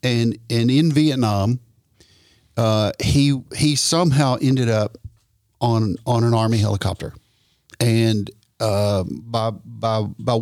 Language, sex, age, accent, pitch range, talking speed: English, male, 50-69, American, 115-145 Hz, 115 wpm